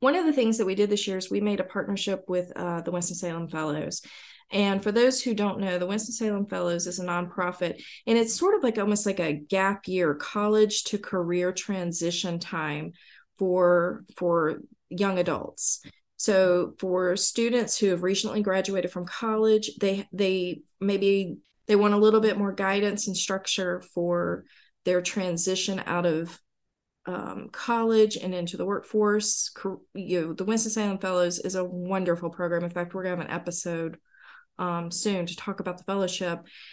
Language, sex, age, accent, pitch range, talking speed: English, female, 30-49, American, 175-210 Hz, 175 wpm